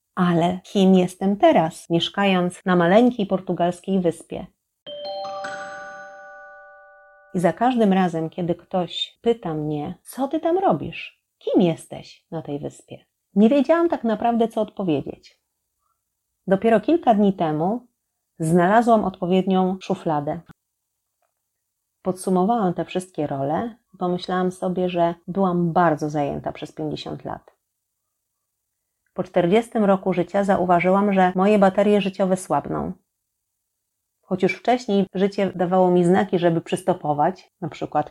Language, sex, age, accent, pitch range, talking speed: Polish, female, 40-59, native, 165-195 Hz, 115 wpm